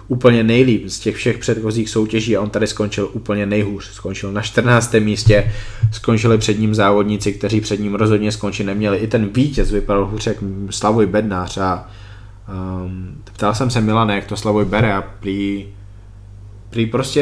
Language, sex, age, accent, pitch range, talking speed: Czech, male, 20-39, native, 100-110 Hz, 165 wpm